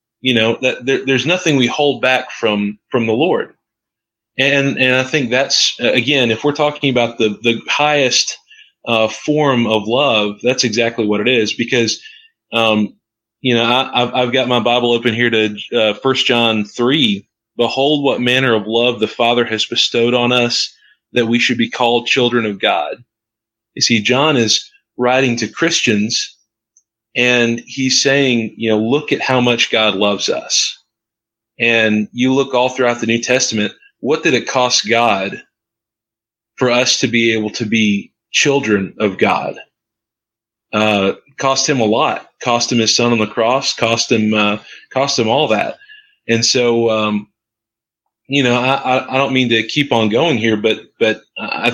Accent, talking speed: American, 175 wpm